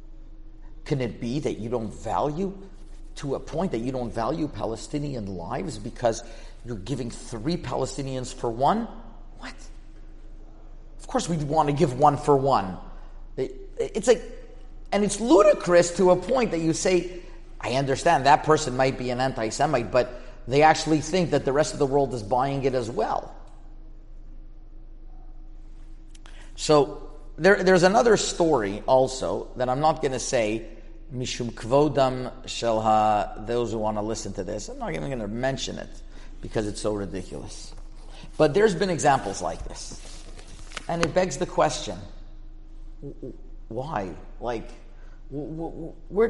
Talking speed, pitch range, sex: 155 wpm, 115-165 Hz, male